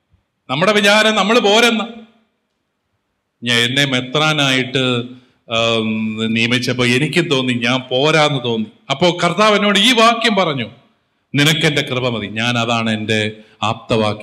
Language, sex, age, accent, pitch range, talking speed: English, male, 40-59, Indian, 155-255 Hz, 110 wpm